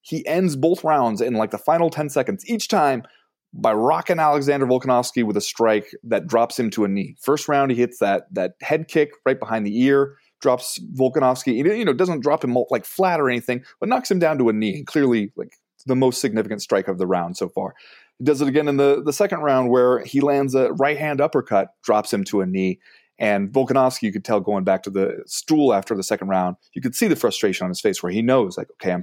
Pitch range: 105-155 Hz